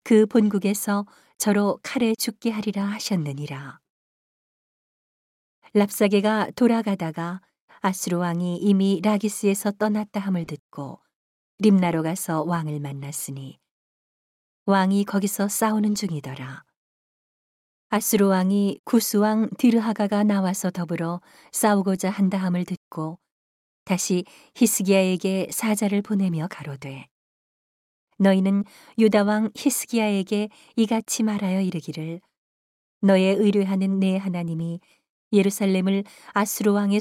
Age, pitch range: 40-59, 175-210 Hz